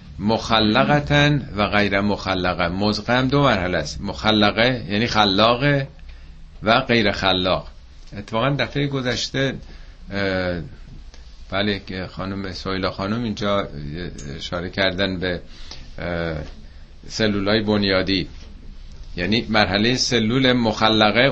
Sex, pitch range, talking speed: male, 85-110 Hz, 90 wpm